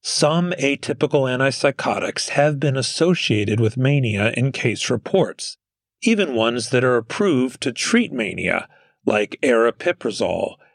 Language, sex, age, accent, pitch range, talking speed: English, male, 40-59, American, 110-135 Hz, 115 wpm